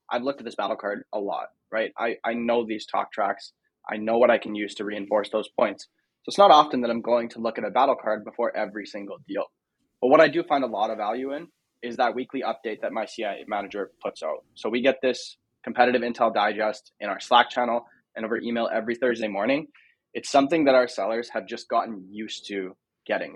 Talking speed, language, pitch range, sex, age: 230 wpm, English, 110-130 Hz, male, 20-39